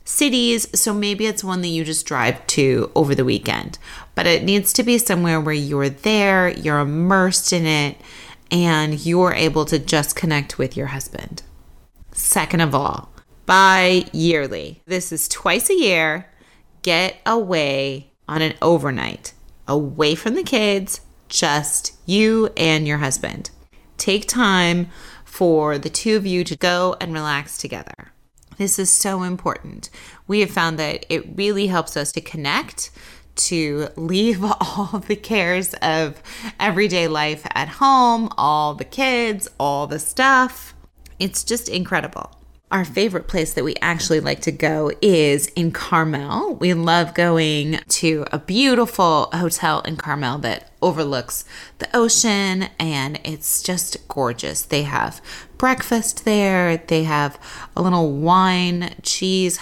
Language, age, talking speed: English, 30-49, 145 wpm